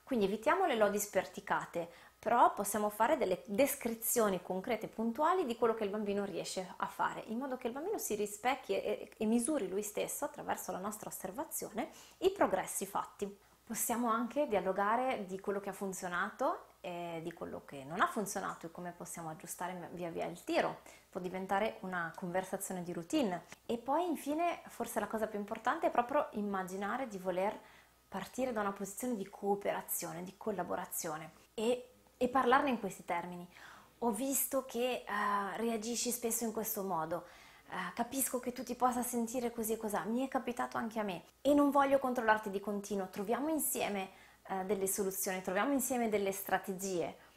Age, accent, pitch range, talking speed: 20-39, native, 190-250 Hz, 165 wpm